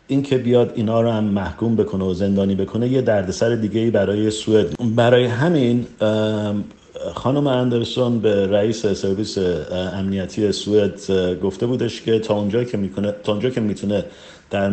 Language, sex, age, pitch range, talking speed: Persian, male, 50-69, 100-115 Hz, 150 wpm